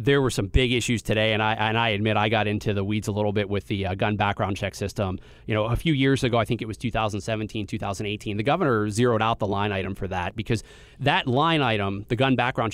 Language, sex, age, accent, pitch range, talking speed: English, male, 30-49, American, 105-135 Hz, 255 wpm